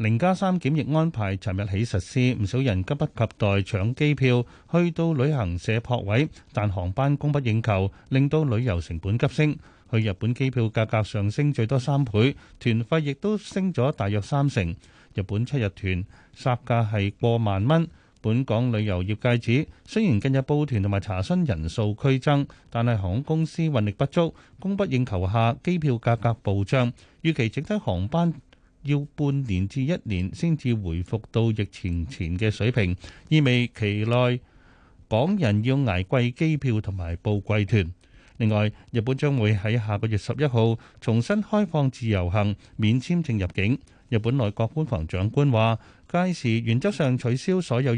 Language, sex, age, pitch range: Chinese, male, 30-49, 105-140 Hz